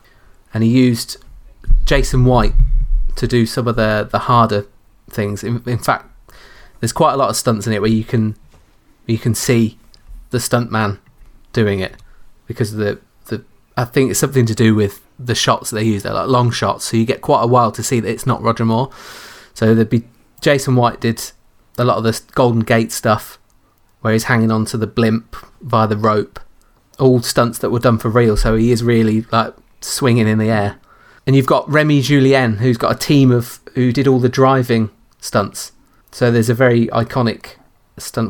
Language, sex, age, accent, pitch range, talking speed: English, male, 30-49, British, 110-130 Hz, 200 wpm